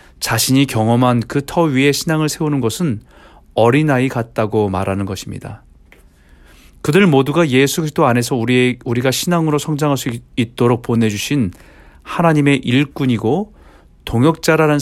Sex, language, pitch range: male, Korean, 110-150 Hz